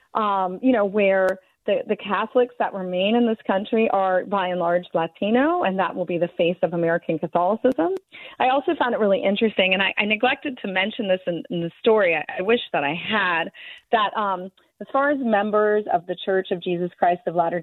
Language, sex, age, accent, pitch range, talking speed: English, female, 30-49, American, 185-230 Hz, 215 wpm